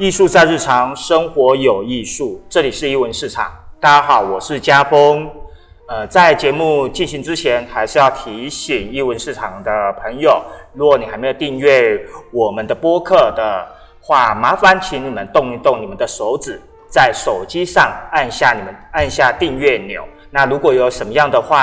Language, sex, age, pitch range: Chinese, male, 30-49, 120-180 Hz